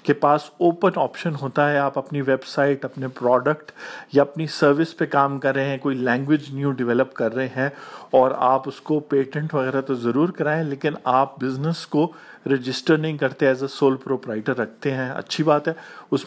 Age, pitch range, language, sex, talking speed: 50-69, 130-155 Hz, Urdu, male, 195 wpm